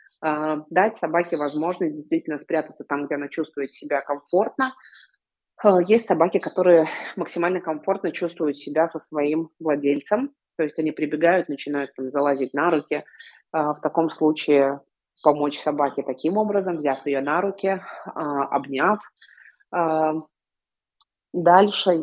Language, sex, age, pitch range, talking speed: Russian, female, 20-39, 145-175 Hz, 115 wpm